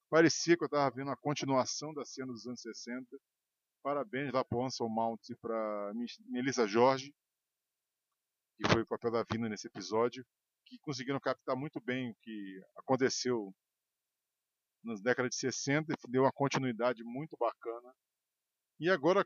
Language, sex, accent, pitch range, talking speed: Portuguese, male, Brazilian, 120-145 Hz, 155 wpm